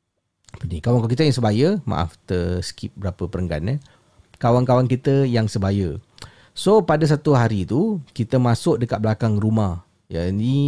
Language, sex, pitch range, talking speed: Malay, male, 105-155 Hz, 145 wpm